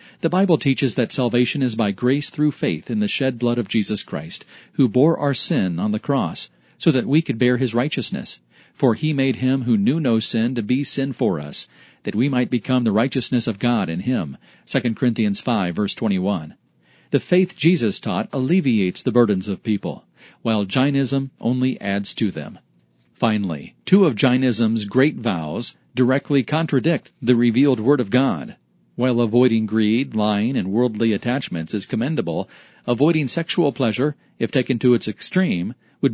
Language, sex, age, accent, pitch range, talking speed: English, male, 40-59, American, 115-145 Hz, 175 wpm